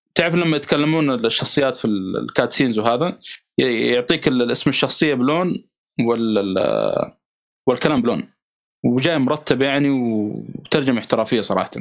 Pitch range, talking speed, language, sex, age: 125-160 Hz, 100 wpm, Arabic, male, 20-39